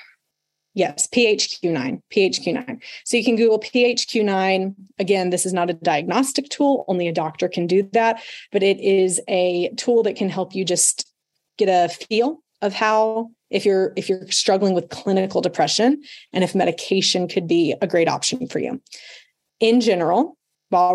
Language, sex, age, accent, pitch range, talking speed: English, female, 20-39, American, 180-235 Hz, 165 wpm